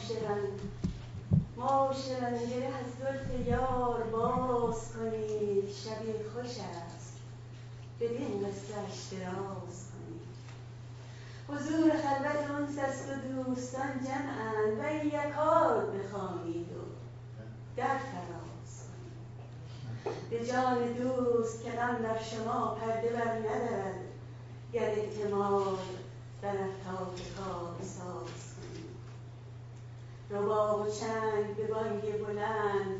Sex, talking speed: female, 80 wpm